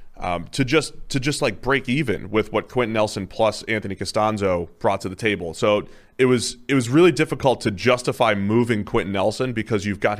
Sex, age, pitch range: male, 30-49, 100-130 Hz